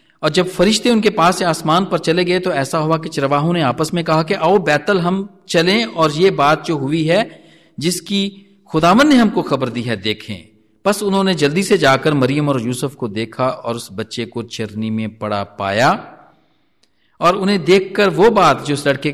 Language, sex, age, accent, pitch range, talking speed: Hindi, male, 50-69, native, 120-195 Hz, 200 wpm